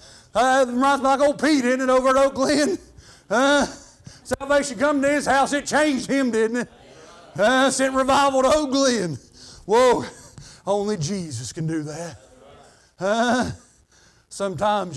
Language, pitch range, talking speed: English, 165-260 Hz, 150 wpm